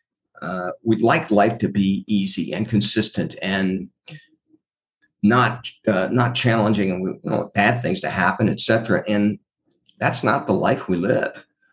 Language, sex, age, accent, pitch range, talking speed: English, male, 50-69, American, 95-115 Hz, 160 wpm